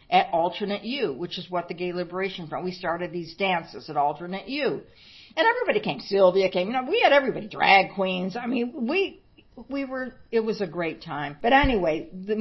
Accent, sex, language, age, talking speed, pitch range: American, female, English, 60-79, 205 wpm, 155-205 Hz